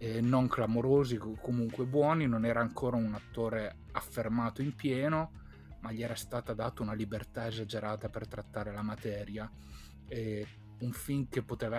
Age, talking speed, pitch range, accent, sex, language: 30-49, 155 wpm, 110-135 Hz, native, male, Italian